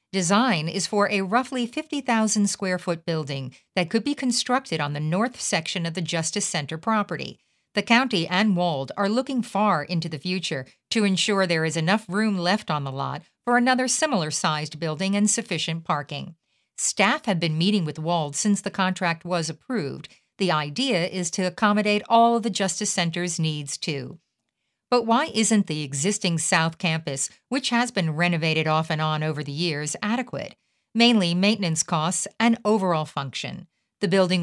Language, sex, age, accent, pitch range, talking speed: English, female, 50-69, American, 160-210 Hz, 165 wpm